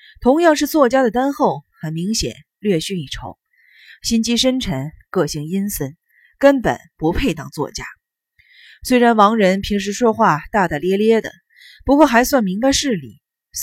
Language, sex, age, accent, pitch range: Chinese, female, 30-49, native, 175-260 Hz